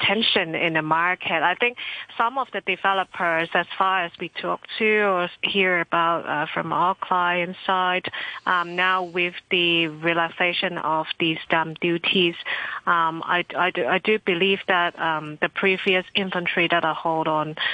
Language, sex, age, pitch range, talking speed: English, female, 30-49, 160-185 Hz, 160 wpm